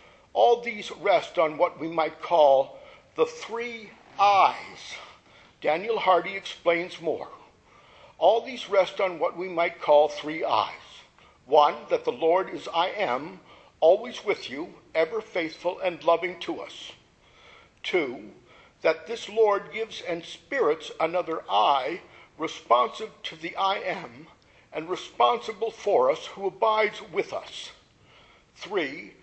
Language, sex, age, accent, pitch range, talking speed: English, male, 50-69, American, 170-235 Hz, 130 wpm